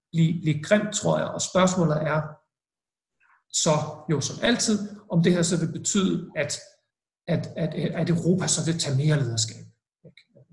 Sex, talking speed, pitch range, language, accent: male, 160 wpm, 150-175 Hz, Danish, native